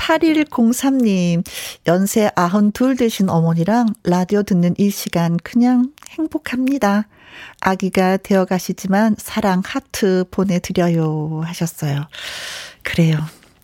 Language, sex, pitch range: Korean, female, 175-225 Hz